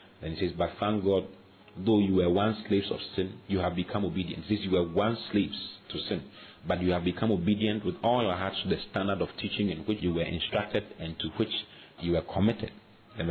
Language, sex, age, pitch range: English, male, 40-59, 85-105 Hz